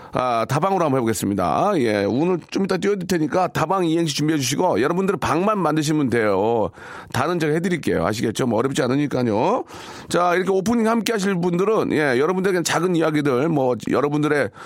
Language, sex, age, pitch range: Korean, male, 40-59, 130-175 Hz